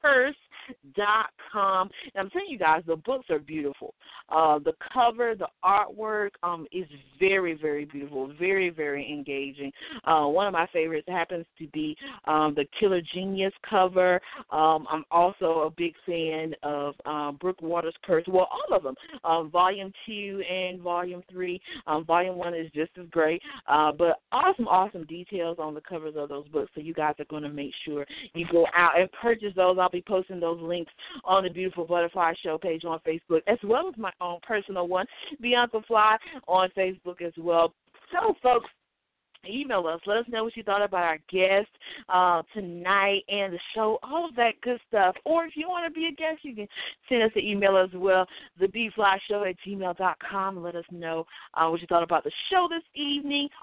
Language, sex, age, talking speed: English, female, 40-59, 190 wpm